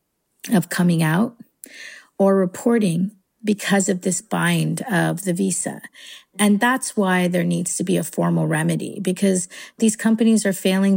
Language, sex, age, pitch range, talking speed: English, female, 40-59, 185-225 Hz, 150 wpm